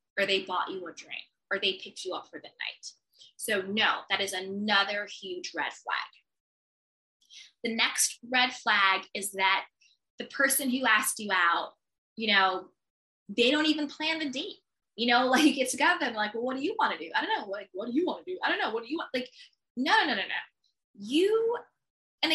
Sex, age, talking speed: female, 20-39, 215 wpm